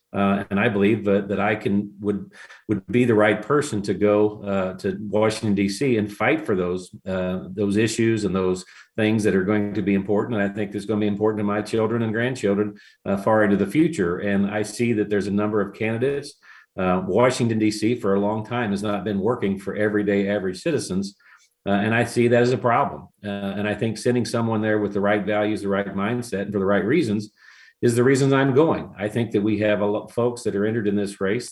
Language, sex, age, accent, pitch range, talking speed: English, male, 50-69, American, 100-110 Hz, 235 wpm